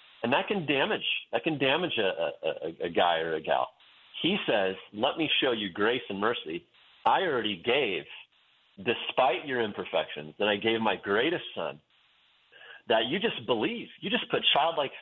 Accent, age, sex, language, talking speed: American, 40-59, male, English, 170 wpm